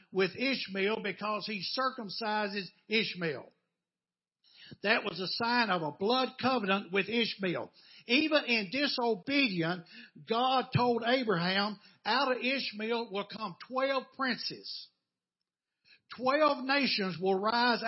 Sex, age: male, 60-79